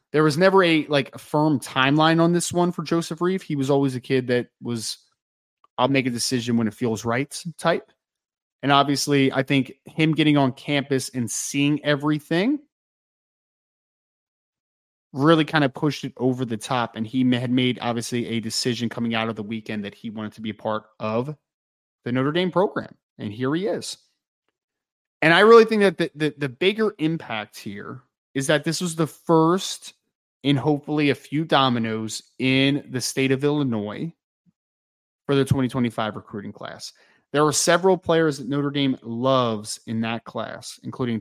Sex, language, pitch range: male, English, 120-160 Hz